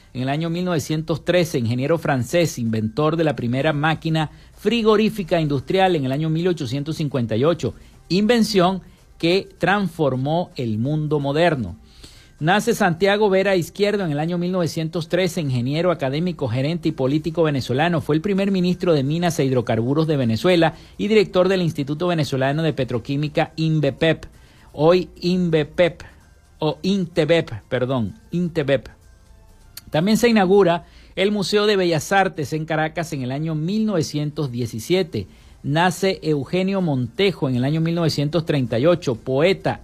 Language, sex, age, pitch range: Spanish, male, 50-69, 135-180 Hz